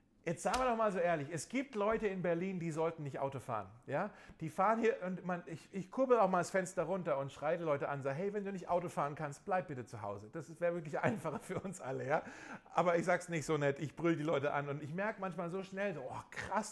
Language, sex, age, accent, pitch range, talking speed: German, male, 40-59, German, 155-205 Hz, 275 wpm